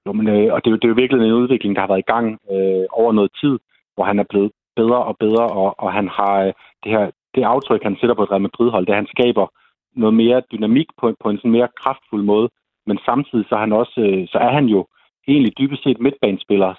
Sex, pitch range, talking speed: male, 100-120 Hz, 245 wpm